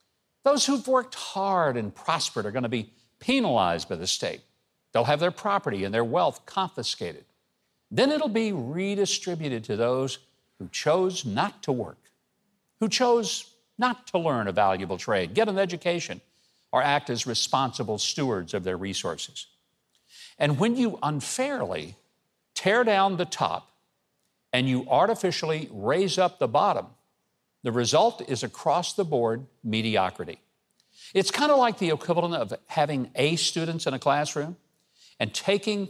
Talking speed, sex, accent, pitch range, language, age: 145 wpm, male, American, 130-200 Hz, English, 60-79